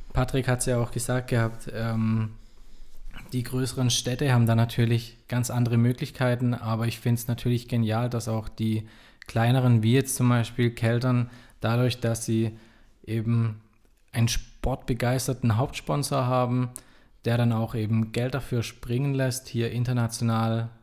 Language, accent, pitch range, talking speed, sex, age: German, German, 115-125 Hz, 145 wpm, male, 20-39